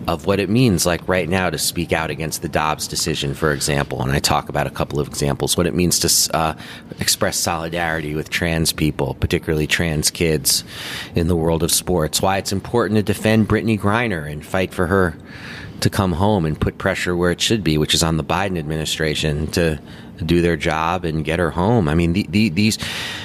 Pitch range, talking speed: 80-95 Hz, 205 wpm